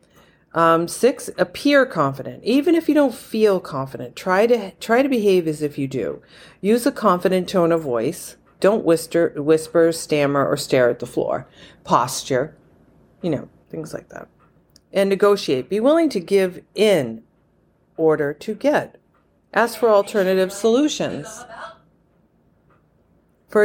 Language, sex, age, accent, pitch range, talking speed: English, female, 40-59, American, 145-200 Hz, 140 wpm